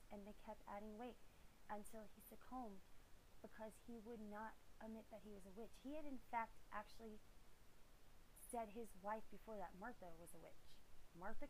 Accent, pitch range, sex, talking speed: American, 195-235 Hz, female, 175 wpm